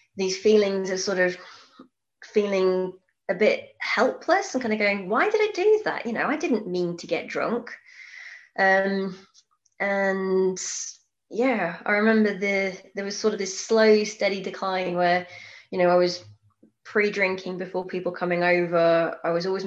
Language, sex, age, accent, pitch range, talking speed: English, female, 20-39, British, 180-220 Hz, 160 wpm